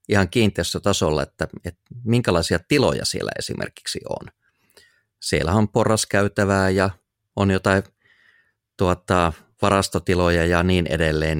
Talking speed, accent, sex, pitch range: 110 wpm, Finnish, male, 85-105 Hz